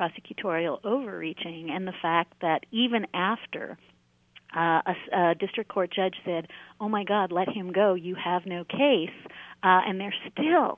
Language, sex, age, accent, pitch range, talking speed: English, female, 40-59, American, 170-210 Hz, 160 wpm